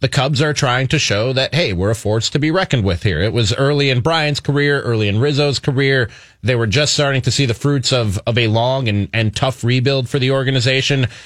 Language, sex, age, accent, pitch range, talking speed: English, male, 30-49, American, 115-145 Hz, 240 wpm